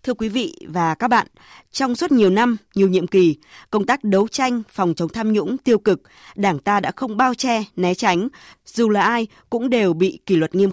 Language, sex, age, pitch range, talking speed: Vietnamese, female, 20-39, 185-245 Hz, 225 wpm